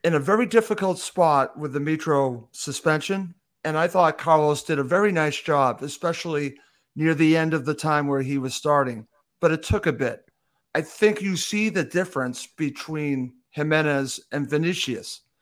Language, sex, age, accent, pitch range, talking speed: English, male, 50-69, American, 155-190 Hz, 170 wpm